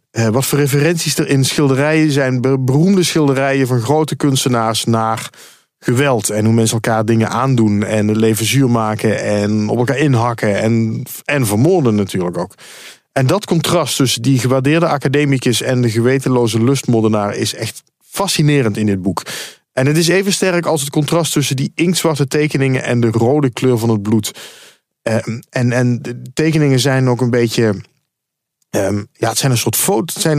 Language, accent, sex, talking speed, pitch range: Dutch, Dutch, male, 170 wpm, 115-150 Hz